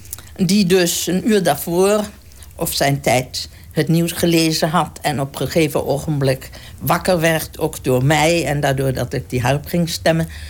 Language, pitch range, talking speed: Dutch, 105-170 Hz, 170 wpm